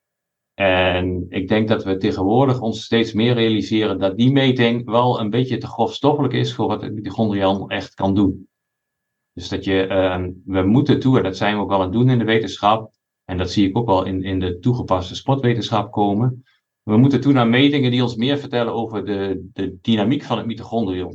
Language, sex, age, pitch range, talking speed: Dutch, male, 50-69, 100-135 Hz, 205 wpm